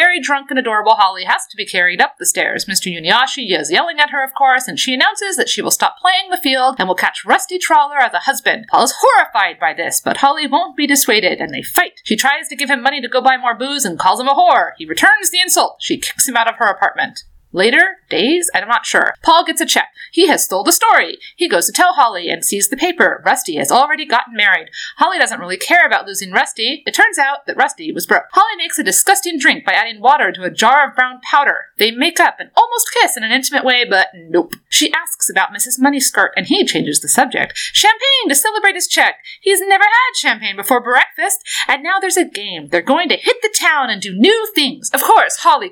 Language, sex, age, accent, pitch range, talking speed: English, female, 30-49, American, 255-380 Hz, 245 wpm